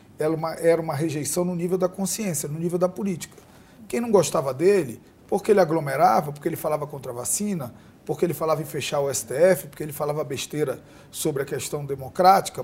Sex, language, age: male, Portuguese, 40-59